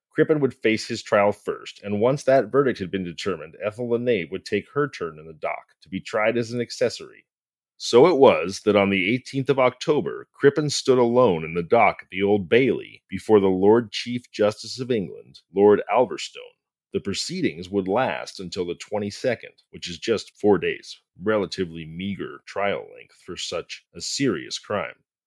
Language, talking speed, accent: English, 185 wpm, American